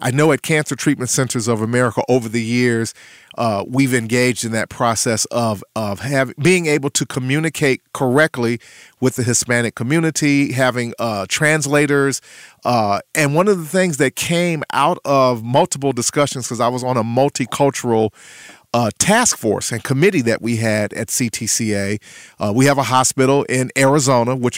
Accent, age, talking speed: American, 40-59, 165 wpm